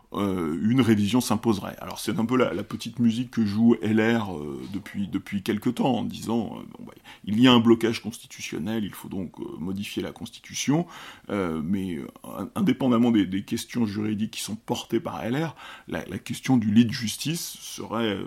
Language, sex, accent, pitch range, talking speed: French, male, French, 105-120 Hz, 195 wpm